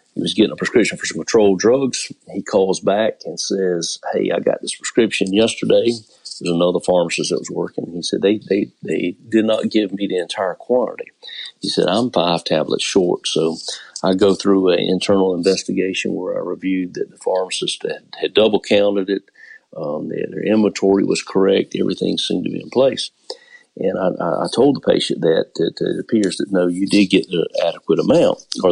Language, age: English, 50-69